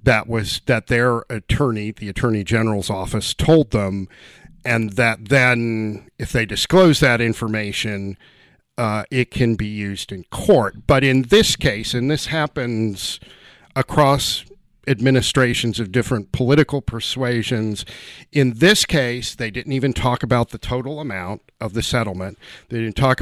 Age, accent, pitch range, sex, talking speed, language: 50-69, American, 110-140 Hz, male, 145 wpm, English